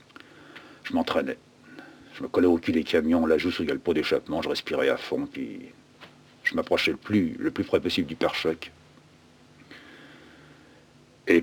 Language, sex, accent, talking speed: French, male, French, 160 wpm